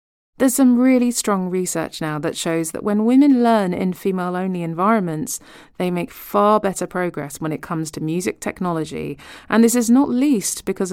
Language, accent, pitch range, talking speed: English, British, 165-210 Hz, 175 wpm